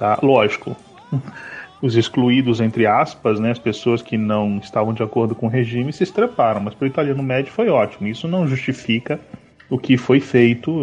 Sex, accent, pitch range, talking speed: male, Brazilian, 120-170 Hz, 185 wpm